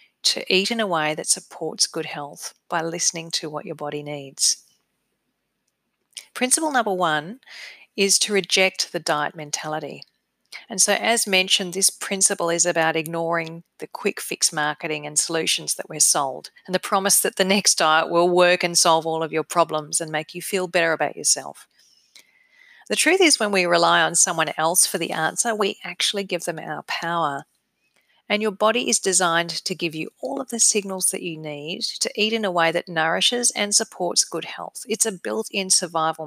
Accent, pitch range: Australian, 160-200 Hz